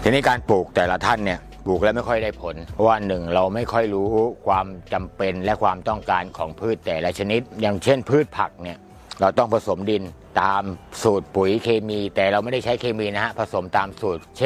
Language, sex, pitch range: Thai, male, 95-120 Hz